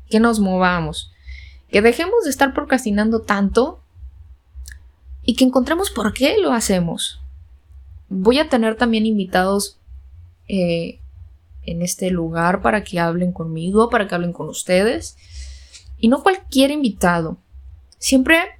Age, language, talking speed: 10-29, Spanish, 125 wpm